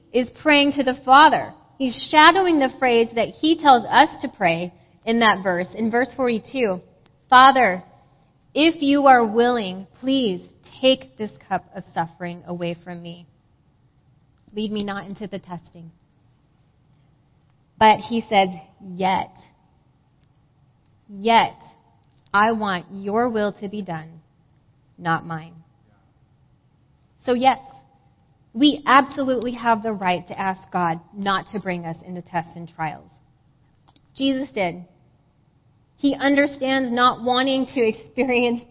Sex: female